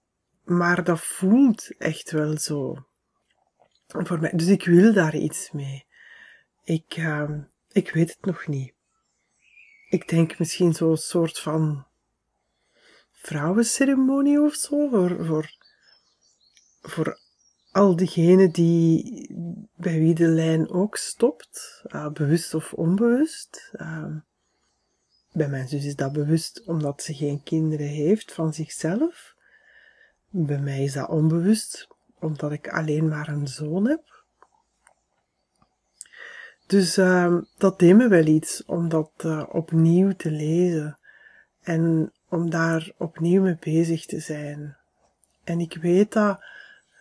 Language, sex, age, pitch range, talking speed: Dutch, female, 30-49, 160-205 Hz, 125 wpm